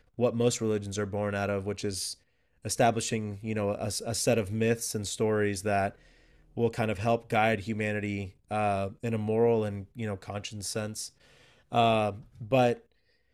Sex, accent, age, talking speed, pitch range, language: male, American, 20-39, 165 wpm, 105-120 Hz, English